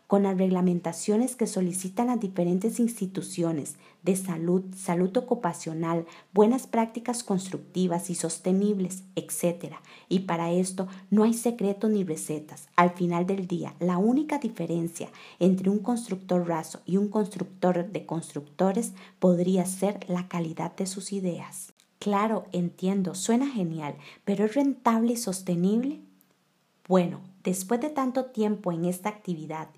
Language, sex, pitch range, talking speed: Spanish, female, 175-210 Hz, 135 wpm